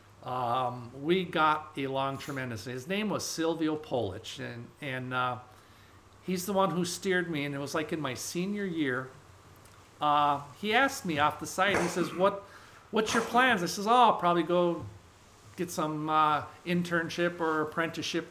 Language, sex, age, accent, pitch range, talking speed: English, male, 50-69, American, 130-180 Hz, 165 wpm